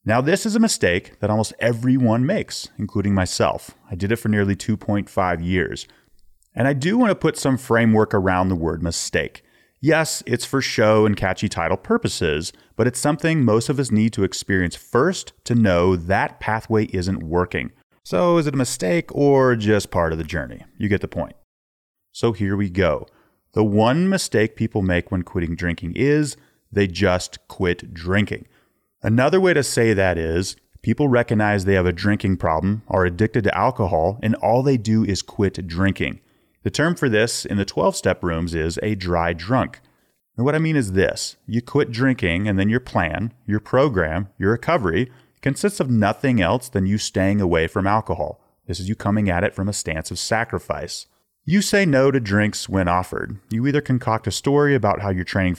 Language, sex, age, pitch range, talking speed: English, male, 30-49, 95-125 Hz, 190 wpm